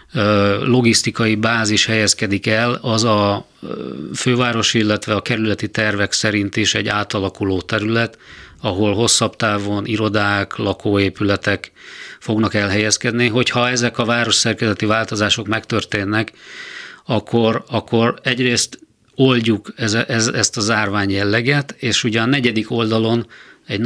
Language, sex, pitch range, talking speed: Hungarian, male, 100-115 Hz, 110 wpm